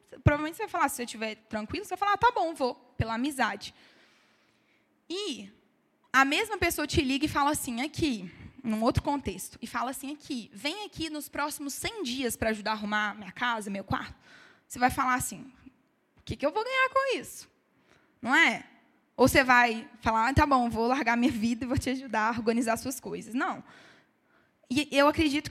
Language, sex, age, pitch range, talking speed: Portuguese, female, 10-29, 225-285 Hz, 200 wpm